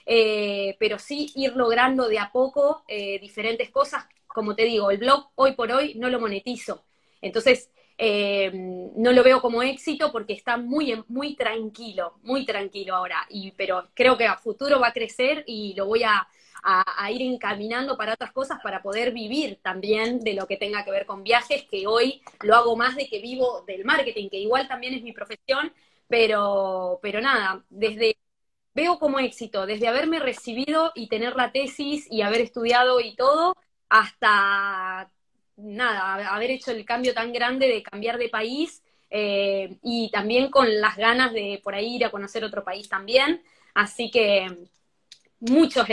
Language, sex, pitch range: Spanish, female, 210-260 Hz